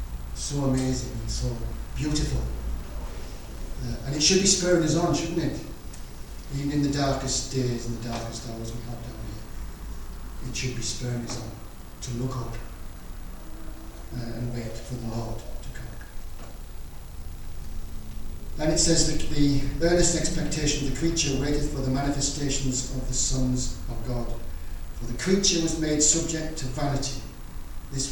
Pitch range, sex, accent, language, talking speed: 90-135 Hz, male, British, English, 155 wpm